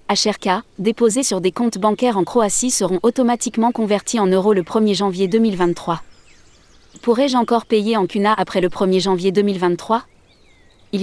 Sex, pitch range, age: female, 185-225 Hz, 20-39